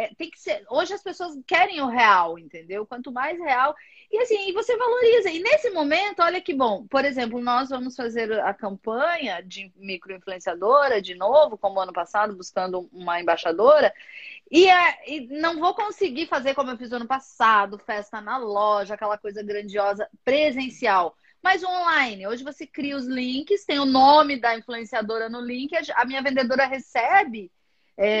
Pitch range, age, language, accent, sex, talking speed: 230-320 Hz, 30-49, Portuguese, Brazilian, female, 170 wpm